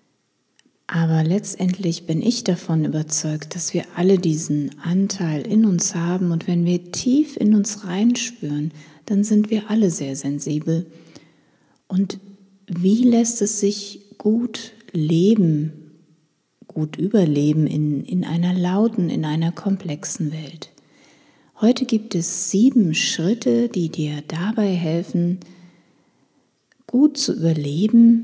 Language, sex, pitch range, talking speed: German, female, 155-210 Hz, 120 wpm